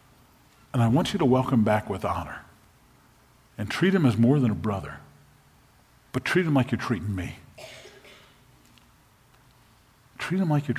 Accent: American